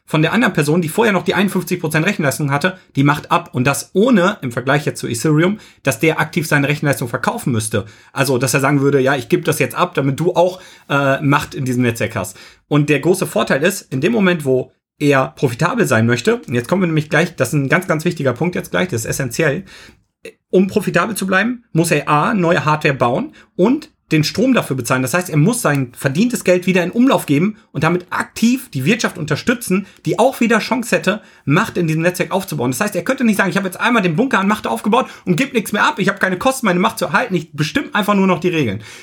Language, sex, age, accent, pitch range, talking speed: German, male, 40-59, German, 145-190 Hz, 240 wpm